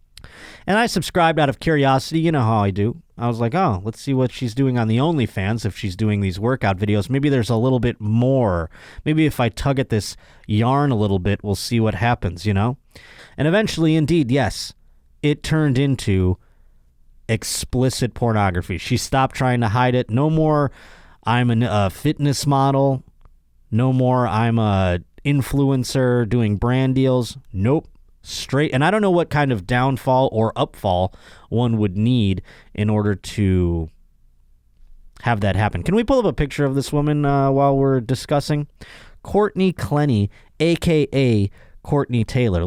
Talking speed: 165 wpm